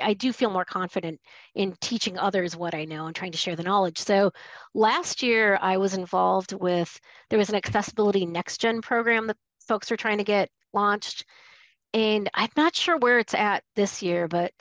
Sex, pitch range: female, 185-235 Hz